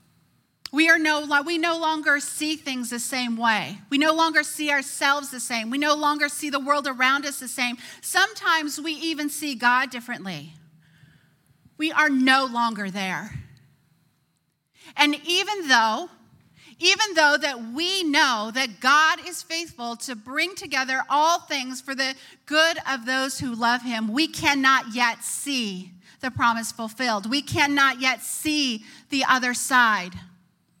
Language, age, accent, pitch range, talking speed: English, 40-59, American, 245-310 Hz, 150 wpm